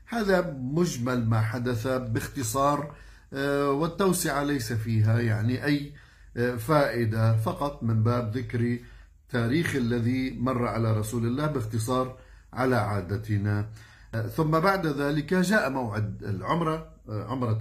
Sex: male